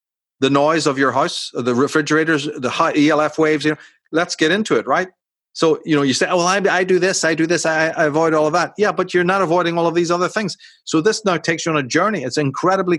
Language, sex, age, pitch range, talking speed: English, male, 40-59, 150-185 Hz, 265 wpm